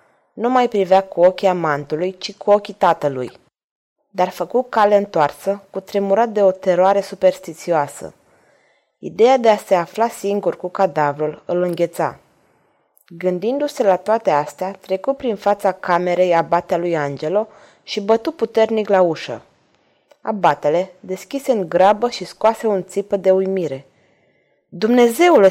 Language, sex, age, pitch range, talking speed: Romanian, female, 20-39, 180-240 Hz, 135 wpm